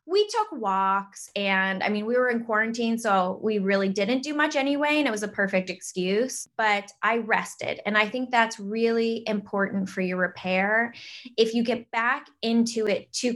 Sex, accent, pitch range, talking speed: female, American, 200-250 Hz, 190 wpm